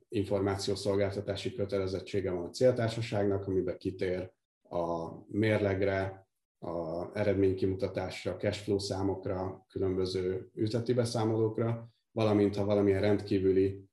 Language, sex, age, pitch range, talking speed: Hungarian, male, 30-49, 95-110 Hz, 85 wpm